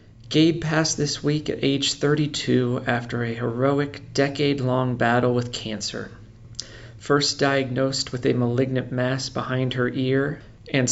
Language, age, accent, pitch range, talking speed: English, 40-59, American, 115-140 Hz, 130 wpm